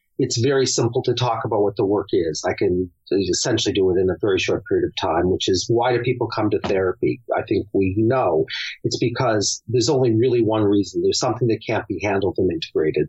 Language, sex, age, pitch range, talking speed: English, male, 40-59, 110-140 Hz, 225 wpm